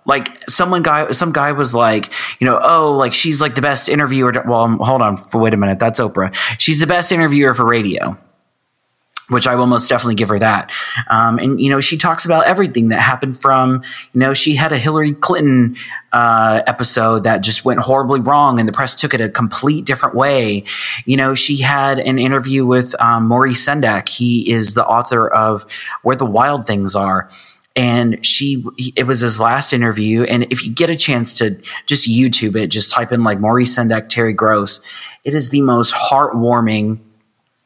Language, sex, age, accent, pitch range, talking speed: English, male, 30-49, American, 115-145 Hz, 195 wpm